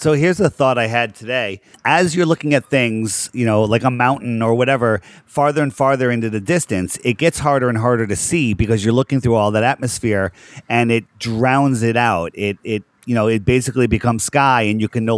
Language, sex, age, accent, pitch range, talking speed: English, male, 40-59, American, 115-145 Hz, 220 wpm